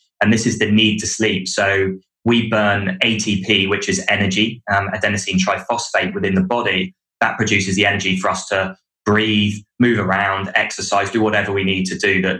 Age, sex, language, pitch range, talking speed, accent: 20-39, male, English, 95-120 Hz, 185 wpm, British